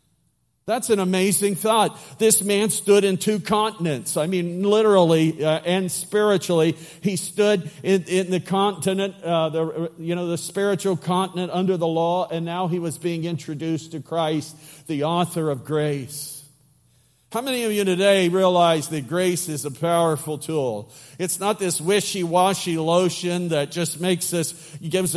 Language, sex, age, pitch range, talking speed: English, male, 50-69, 155-185 Hz, 155 wpm